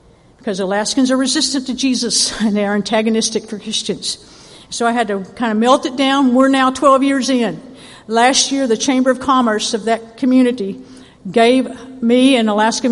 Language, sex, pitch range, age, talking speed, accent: English, female, 215-265 Hz, 50-69, 180 wpm, American